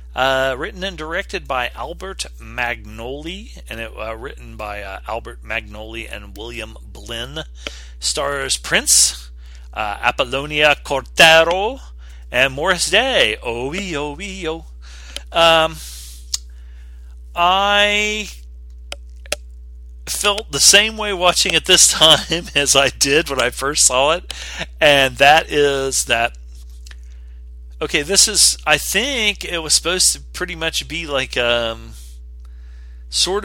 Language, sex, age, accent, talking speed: English, male, 40-59, American, 125 wpm